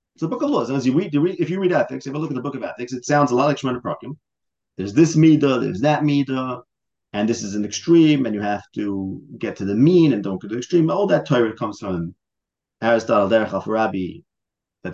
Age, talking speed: 30-49, 245 wpm